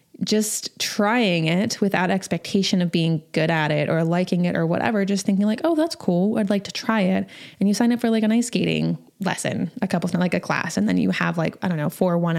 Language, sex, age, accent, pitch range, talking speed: English, female, 20-39, American, 185-240 Hz, 245 wpm